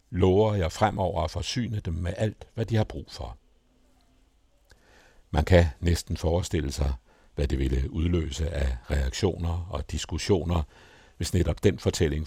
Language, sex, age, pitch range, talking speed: Danish, male, 60-79, 80-95 Hz, 145 wpm